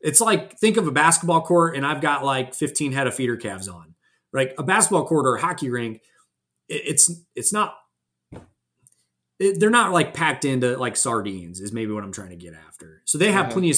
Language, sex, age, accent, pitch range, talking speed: English, male, 30-49, American, 115-150 Hz, 215 wpm